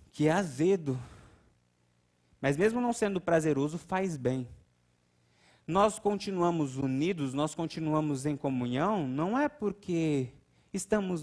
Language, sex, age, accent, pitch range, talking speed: Portuguese, male, 30-49, Brazilian, 110-175 Hz, 110 wpm